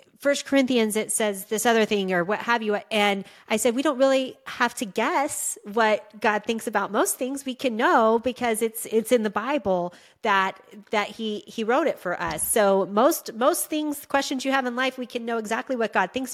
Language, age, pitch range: English, 30-49, 205-255 Hz